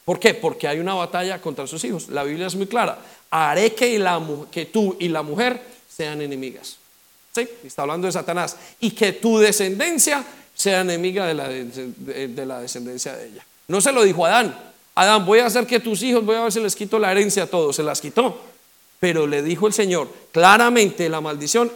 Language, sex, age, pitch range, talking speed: English, male, 40-59, 165-220 Hz, 210 wpm